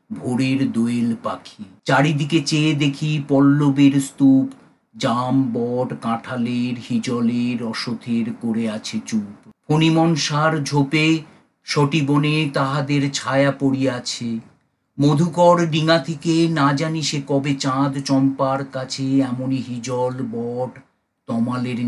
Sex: male